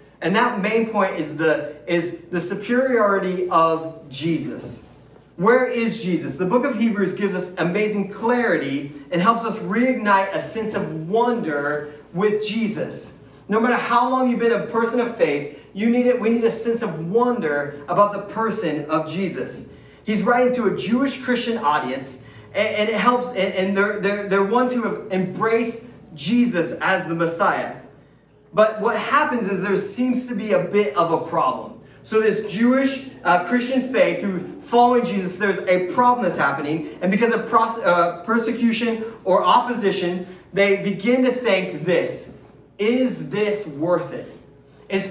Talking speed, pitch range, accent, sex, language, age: 165 wpm, 175-235 Hz, American, male, English, 30-49